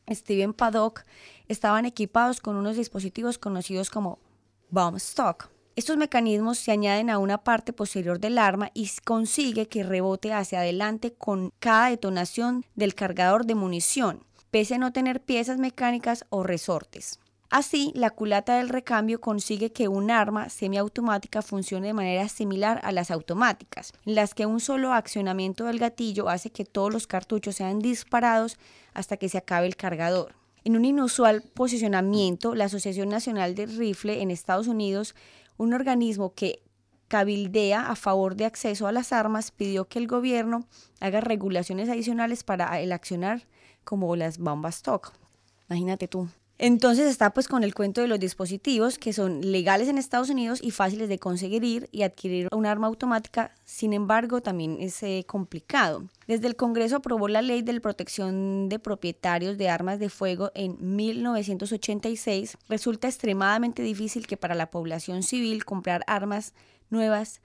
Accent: Colombian